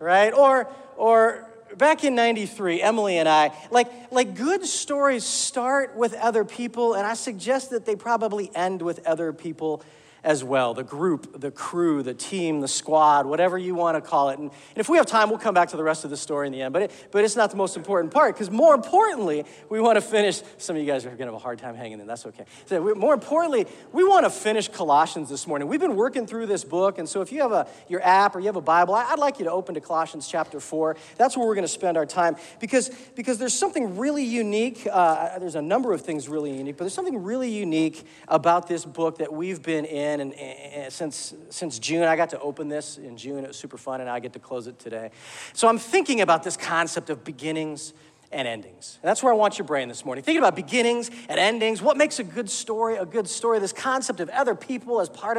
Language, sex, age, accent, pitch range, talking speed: English, male, 40-59, American, 160-240 Hz, 245 wpm